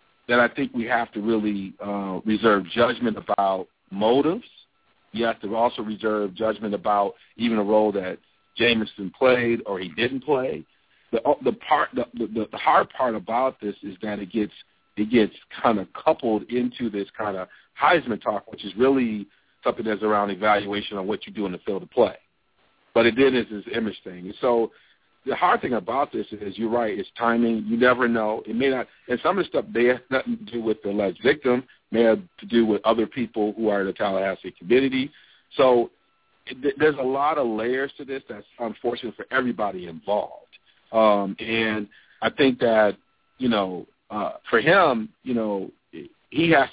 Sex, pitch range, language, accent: male, 105-125 Hz, English, American